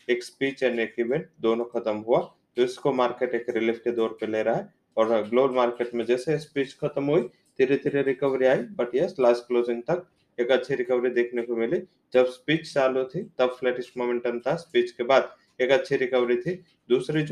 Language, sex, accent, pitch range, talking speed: English, male, Indian, 115-135 Hz, 190 wpm